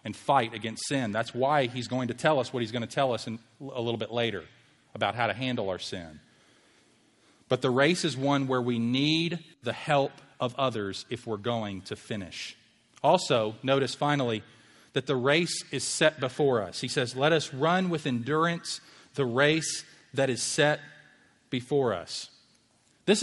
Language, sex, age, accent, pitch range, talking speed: English, male, 40-59, American, 130-170 Hz, 180 wpm